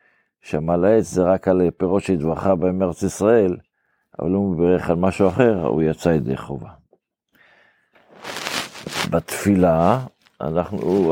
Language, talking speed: Hebrew, 125 wpm